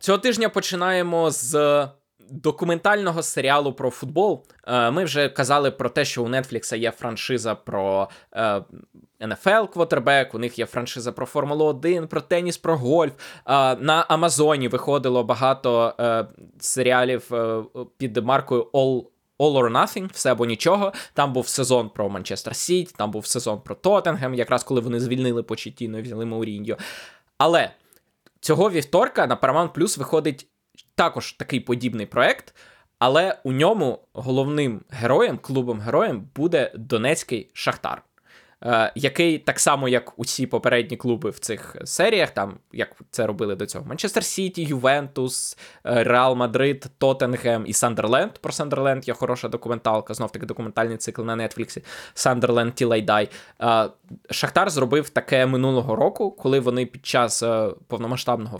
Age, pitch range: 20-39, 120-150 Hz